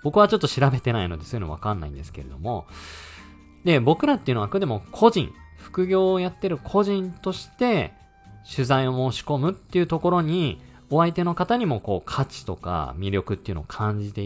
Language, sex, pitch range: Japanese, male, 95-155 Hz